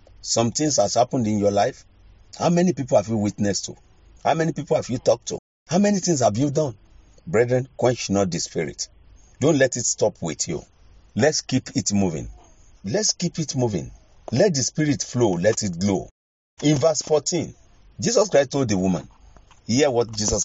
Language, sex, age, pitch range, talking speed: English, male, 50-69, 95-140 Hz, 190 wpm